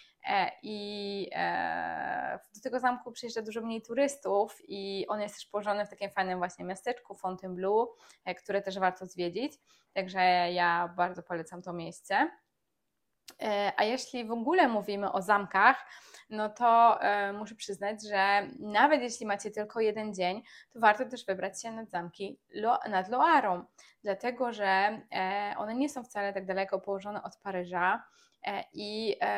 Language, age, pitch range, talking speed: Polish, 20-39, 195-240 Hz, 140 wpm